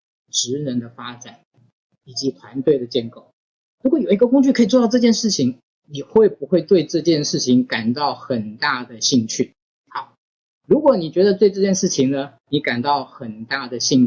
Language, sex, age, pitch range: Chinese, male, 20-39, 125-155 Hz